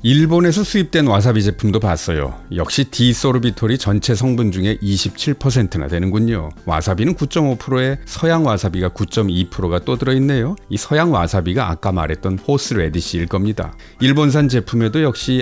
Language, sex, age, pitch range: Korean, male, 40-59, 95-135 Hz